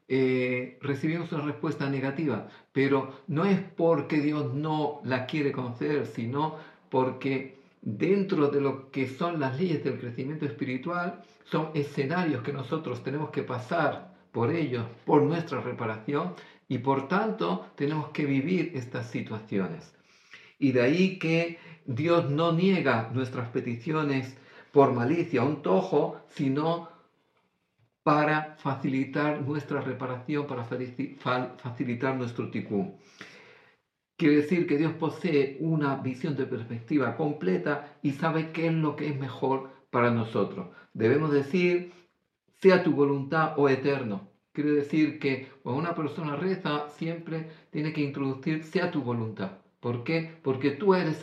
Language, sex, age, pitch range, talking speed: Greek, male, 50-69, 130-160 Hz, 135 wpm